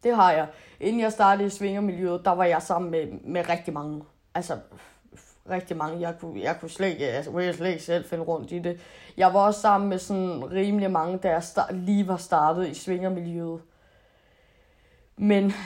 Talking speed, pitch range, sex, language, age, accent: 185 wpm, 170-205 Hz, female, Danish, 20-39, native